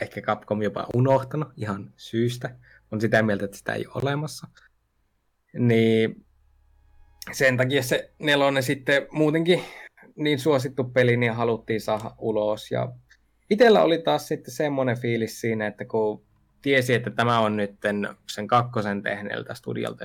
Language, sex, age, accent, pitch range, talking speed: Finnish, male, 20-39, native, 105-140 Hz, 140 wpm